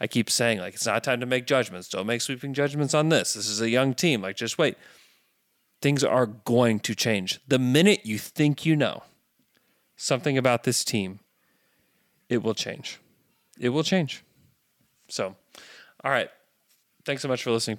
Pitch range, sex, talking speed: 100-125 Hz, male, 180 wpm